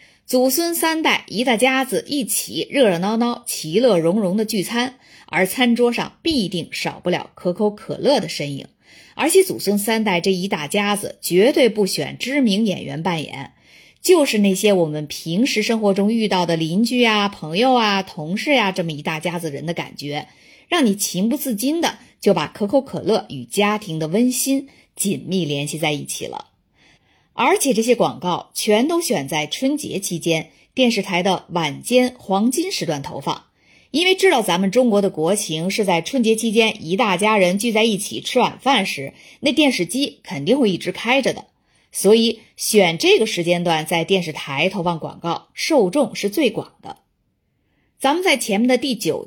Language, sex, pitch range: Chinese, female, 175-250 Hz